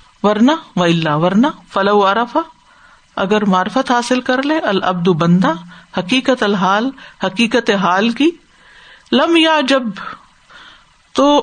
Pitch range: 190-240 Hz